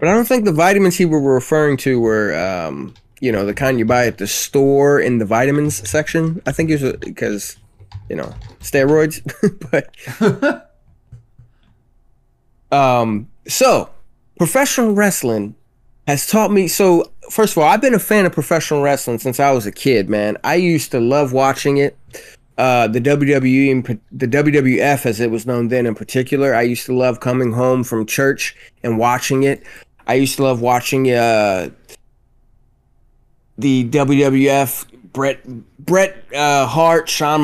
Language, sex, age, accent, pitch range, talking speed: English, male, 20-39, American, 120-155 Hz, 160 wpm